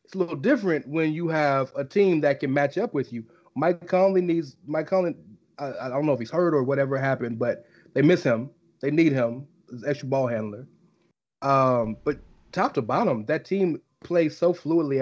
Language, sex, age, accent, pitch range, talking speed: English, male, 30-49, American, 130-170 Hz, 215 wpm